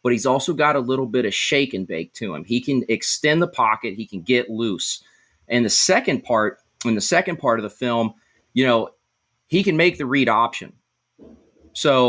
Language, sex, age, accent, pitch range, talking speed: English, male, 30-49, American, 115-145 Hz, 210 wpm